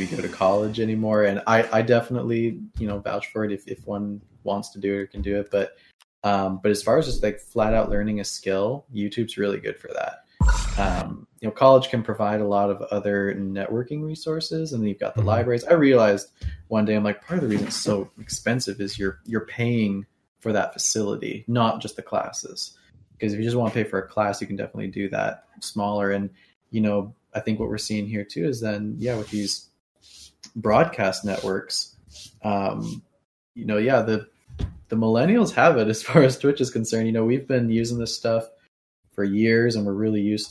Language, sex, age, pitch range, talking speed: English, male, 20-39, 100-115 Hz, 215 wpm